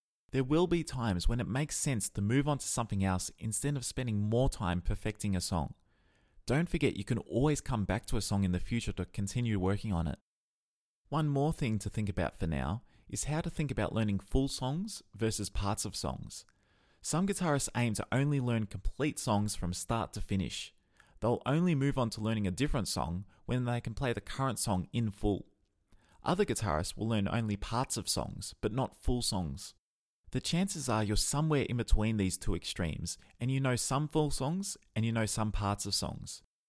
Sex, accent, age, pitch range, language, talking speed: male, Australian, 20-39, 100-135 Hz, English, 205 wpm